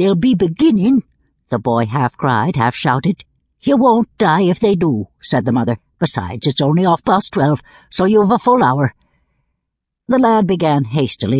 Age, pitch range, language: 60-79, 125-205 Hz, English